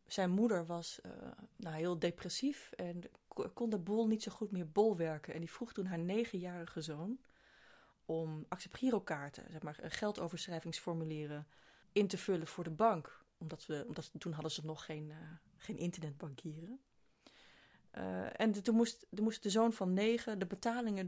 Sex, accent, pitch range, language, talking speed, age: female, Dutch, 170-215 Hz, Dutch, 170 wpm, 30-49